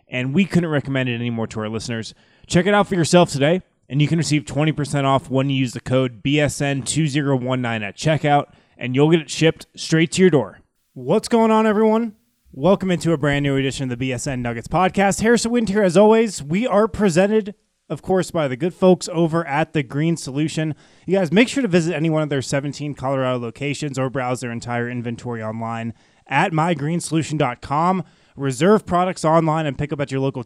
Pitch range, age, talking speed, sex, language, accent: 130-185 Hz, 20-39, 200 wpm, male, English, American